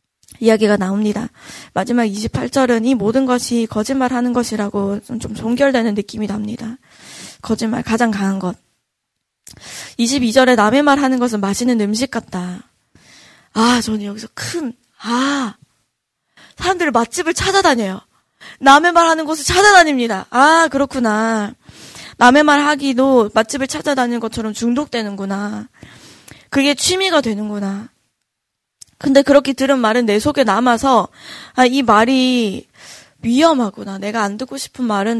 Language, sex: Korean, female